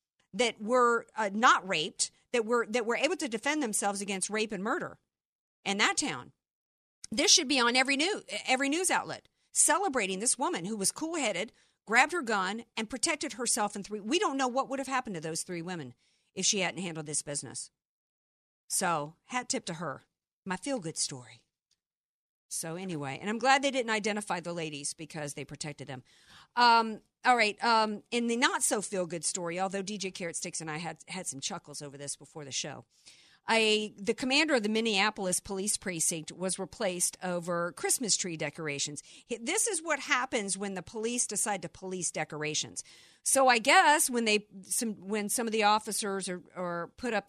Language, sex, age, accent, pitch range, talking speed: English, female, 50-69, American, 175-245 Hz, 185 wpm